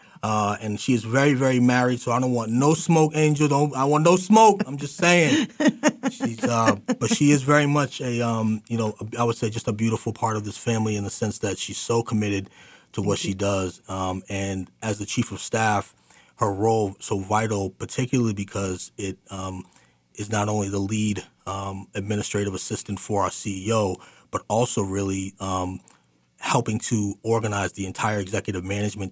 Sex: male